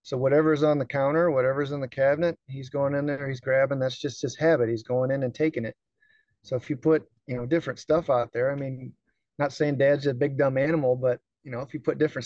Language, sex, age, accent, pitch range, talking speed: English, male, 30-49, American, 125-155 Hz, 250 wpm